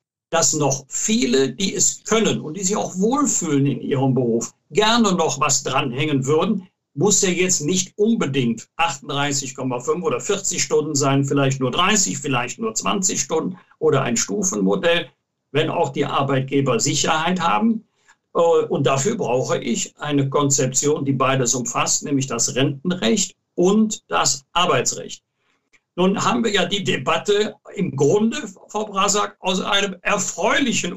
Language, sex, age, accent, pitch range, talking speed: German, male, 60-79, German, 135-200 Hz, 140 wpm